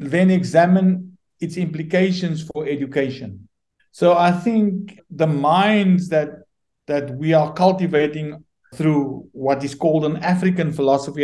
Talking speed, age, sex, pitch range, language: 125 wpm, 60-79, male, 145-185 Hz, English